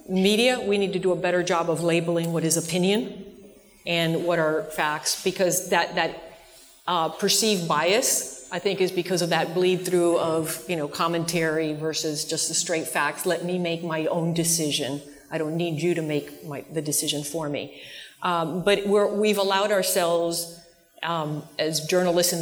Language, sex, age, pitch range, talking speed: English, female, 40-59, 165-200 Hz, 180 wpm